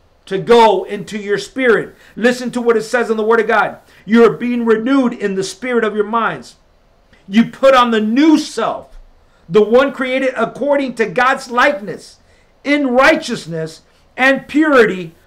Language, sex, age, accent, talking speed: English, male, 50-69, American, 165 wpm